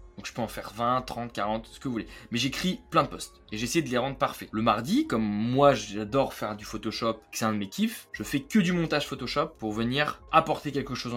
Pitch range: 110-145 Hz